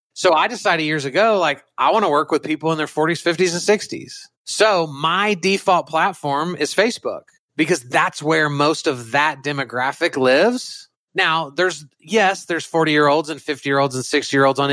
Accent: American